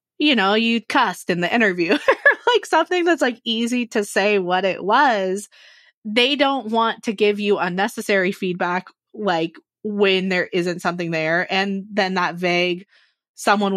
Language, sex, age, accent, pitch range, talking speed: English, female, 20-39, American, 180-230 Hz, 155 wpm